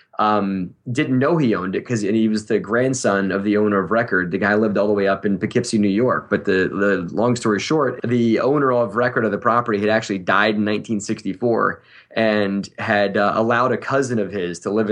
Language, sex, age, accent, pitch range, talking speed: English, male, 20-39, American, 100-120 Hz, 220 wpm